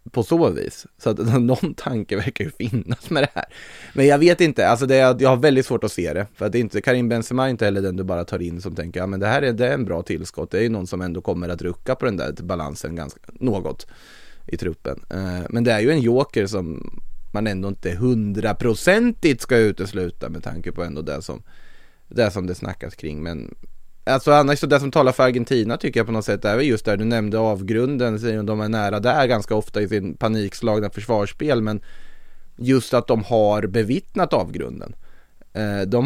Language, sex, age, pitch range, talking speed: English, male, 20-39, 100-125 Hz, 220 wpm